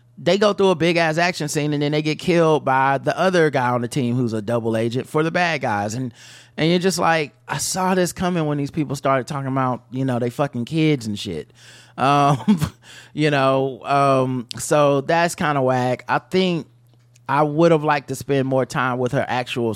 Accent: American